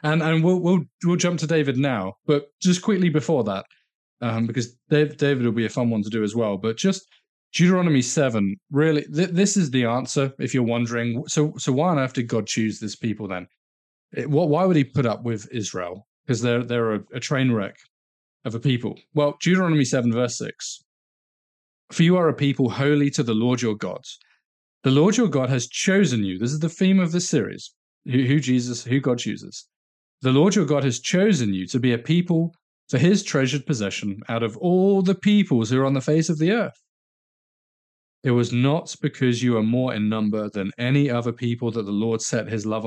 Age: 30-49